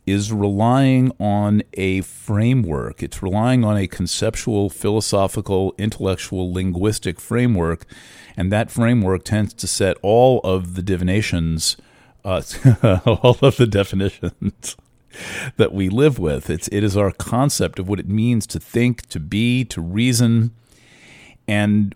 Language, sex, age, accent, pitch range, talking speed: English, male, 40-59, American, 95-115 Hz, 135 wpm